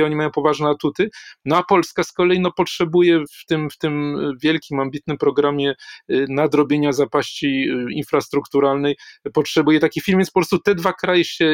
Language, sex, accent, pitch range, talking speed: Polish, male, native, 140-160 Hz, 160 wpm